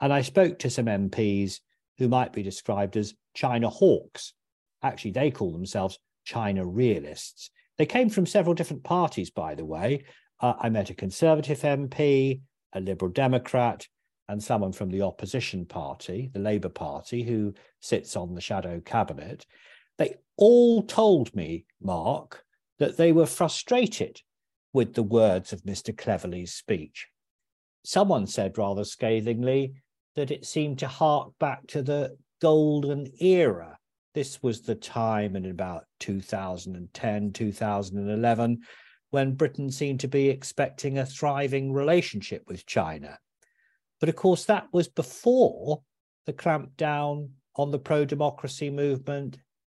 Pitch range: 110-155 Hz